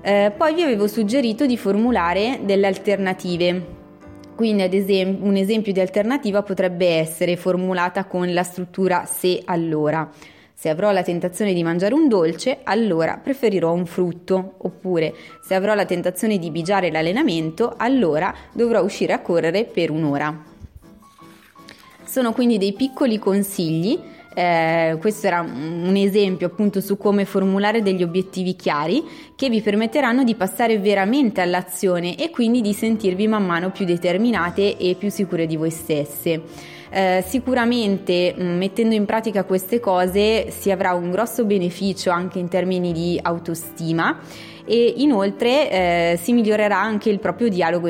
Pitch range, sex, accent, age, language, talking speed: 175-215 Hz, female, native, 20-39, Italian, 145 wpm